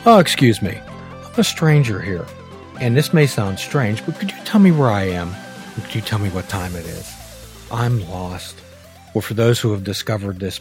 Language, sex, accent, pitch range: English, male, American, 95-130 Hz